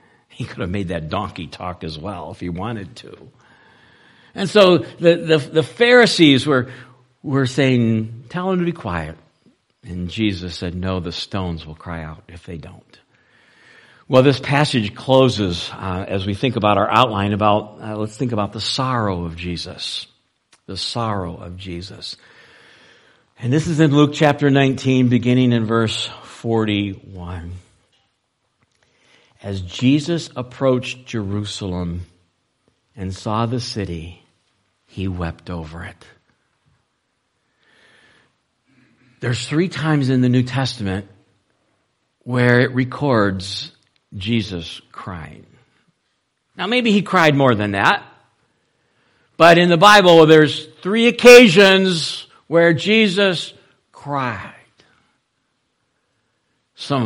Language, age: English, 60-79